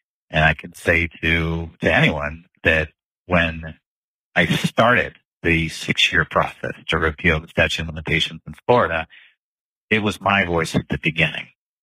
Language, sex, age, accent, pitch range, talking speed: English, male, 50-69, American, 80-95 Hz, 145 wpm